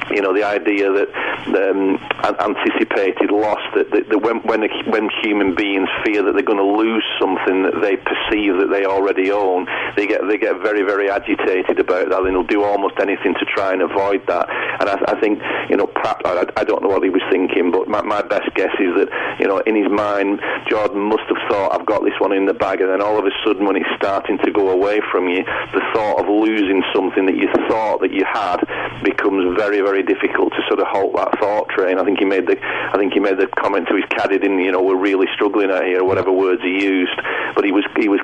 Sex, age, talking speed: male, 40-59, 240 wpm